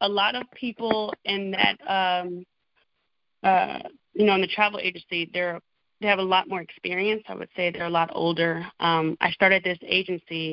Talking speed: 190 wpm